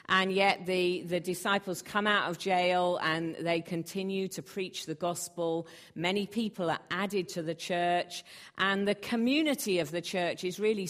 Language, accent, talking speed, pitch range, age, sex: English, British, 170 wpm, 165-200 Hz, 50-69, female